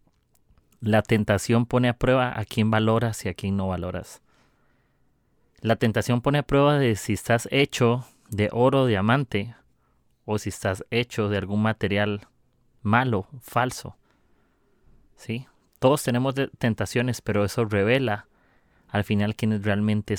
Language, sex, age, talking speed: Spanish, male, 30-49, 135 wpm